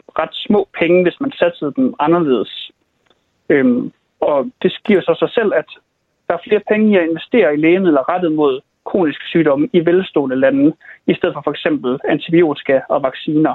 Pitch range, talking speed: 150-190 Hz, 175 wpm